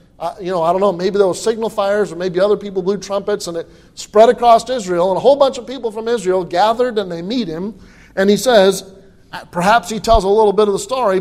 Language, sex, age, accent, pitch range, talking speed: English, male, 50-69, American, 185-240 Hz, 250 wpm